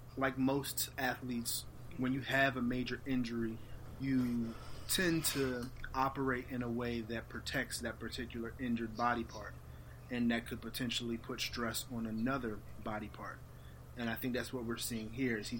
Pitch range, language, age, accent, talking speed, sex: 115-135 Hz, English, 30-49, American, 165 wpm, male